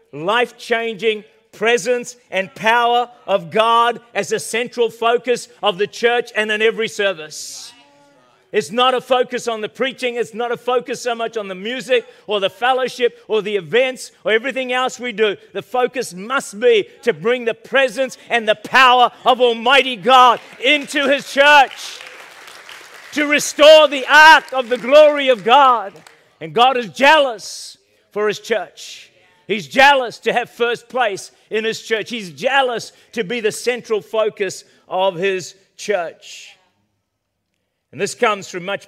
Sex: male